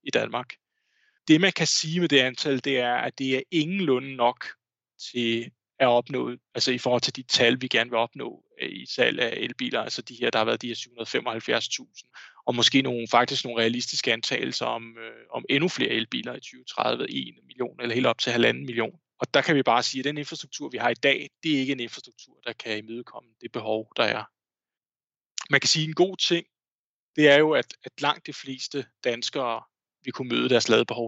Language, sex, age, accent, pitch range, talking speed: Danish, male, 20-39, native, 120-155 Hz, 210 wpm